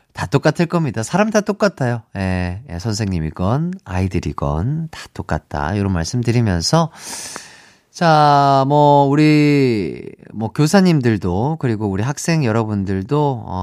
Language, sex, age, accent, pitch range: Korean, male, 30-49, native, 110-170 Hz